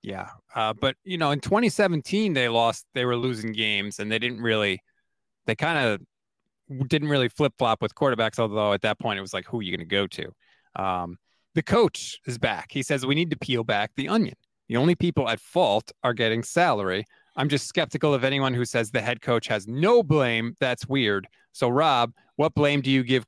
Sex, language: male, English